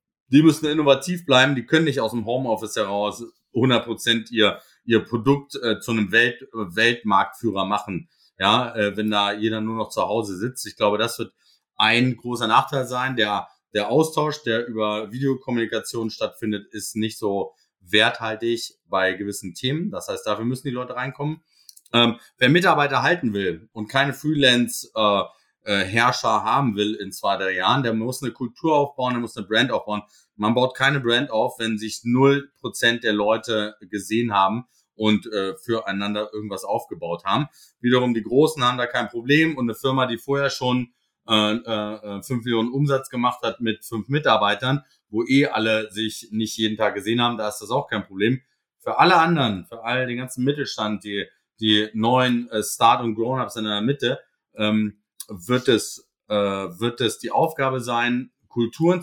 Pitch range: 105-130 Hz